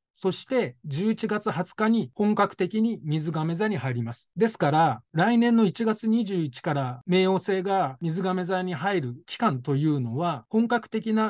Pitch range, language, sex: 145-205 Hz, Japanese, male